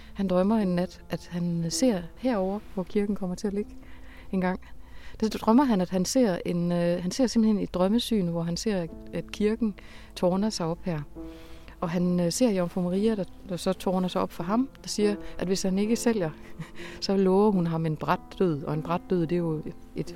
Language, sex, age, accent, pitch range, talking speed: Danish, female, 30-49, native, 175-220 Hz, 215 wpm